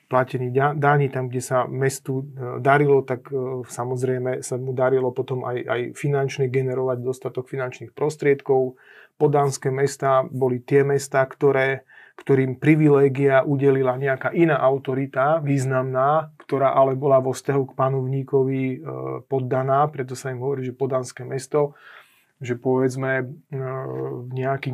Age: 30-49